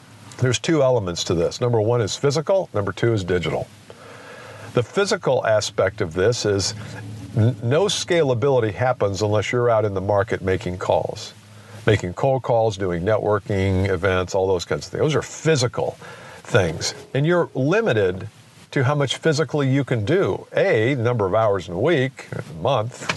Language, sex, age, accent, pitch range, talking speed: English, male, 50-69, American, 105-140 Hz, 165 wpm